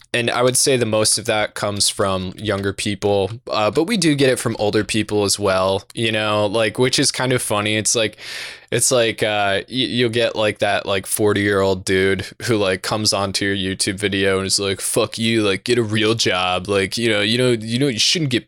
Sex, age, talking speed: male, 20-39, 235 wpm